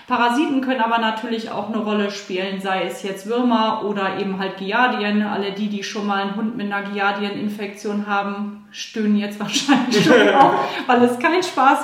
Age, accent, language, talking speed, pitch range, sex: 30-49, German, German, 175 wpm, 195-235 Hz, female